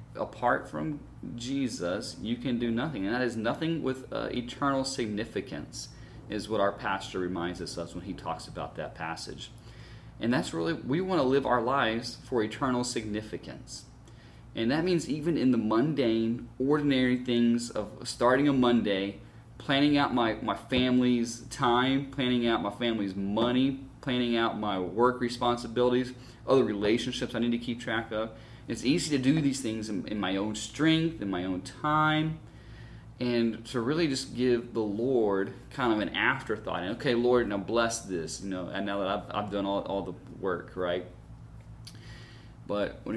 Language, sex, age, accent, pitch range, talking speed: English, male, 30-49, American, 110-125 Hz, 170 wpm